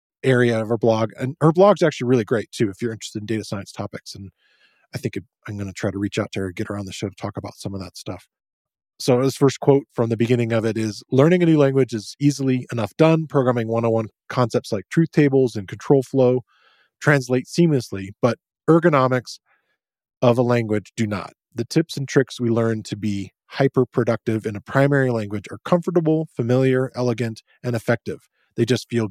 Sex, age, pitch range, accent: male, 20-39, 110-135 Hz, American